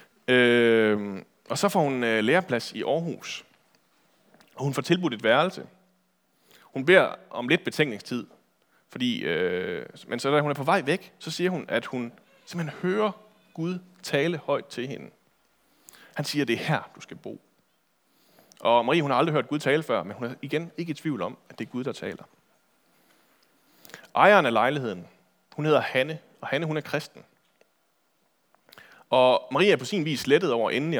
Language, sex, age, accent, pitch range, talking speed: Danish, male, 30-49, native, 125-170 Hz, 180 wpm